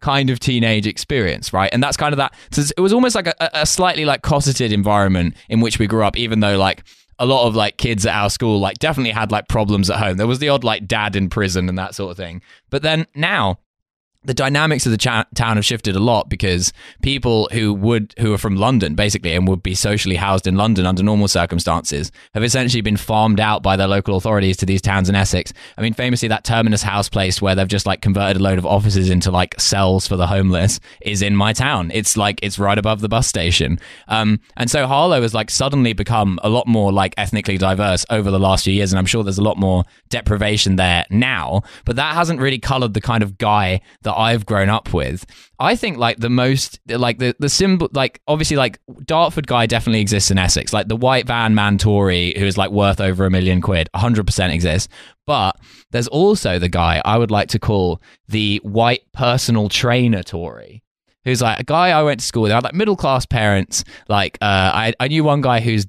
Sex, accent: male, British